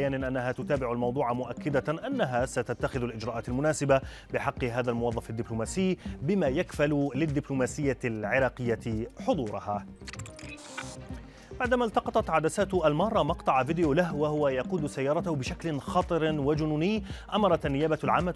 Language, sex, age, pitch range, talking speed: Arabic, male, 30-49, 120-165 Hz, 110 wpm